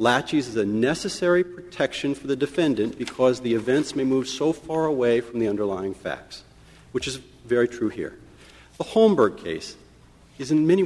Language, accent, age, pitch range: English, American, 50-69, 130-190 Hz